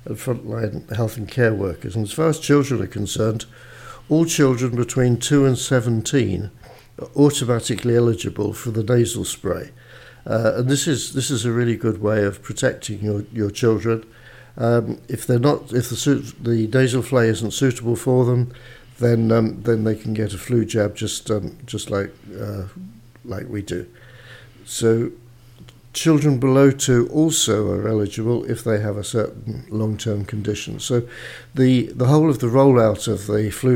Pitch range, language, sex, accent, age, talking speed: 110-125 Hz, English, male, British, 50-69, 170 wpm